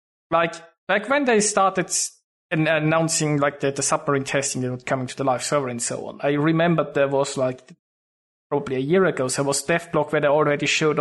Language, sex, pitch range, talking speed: English, male, 140-160 Hz, 220 wpm